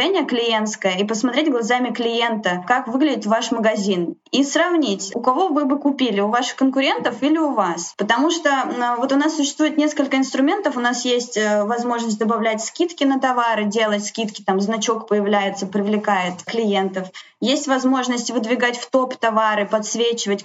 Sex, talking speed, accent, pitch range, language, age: female, 155 wpm, native, 210-270 Hz, Russian, 20-39